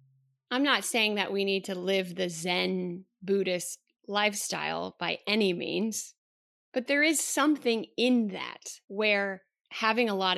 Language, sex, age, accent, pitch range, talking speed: English, female, 30-49, American, 190-235 Hz, 145 wpm